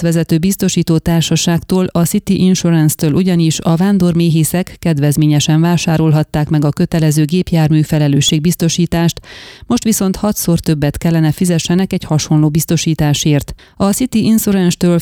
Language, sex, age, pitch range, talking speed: Hungarian, female, 30-49, 155-185 Hz, 110 wpm